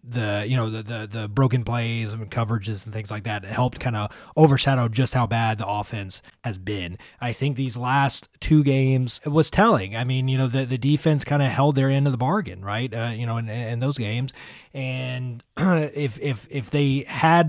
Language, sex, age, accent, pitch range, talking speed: English, male, 20-39, American, 110-135 Hz, 215 wpm